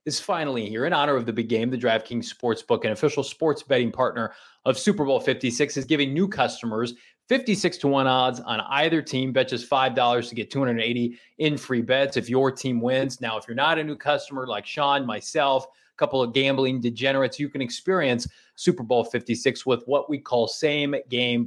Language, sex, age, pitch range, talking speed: English, male, 30-49, 120-145 Hz, 200 wpm